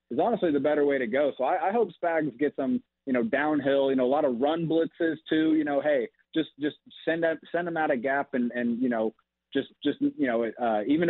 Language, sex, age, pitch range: English, male, 30-49, 120-145 Hz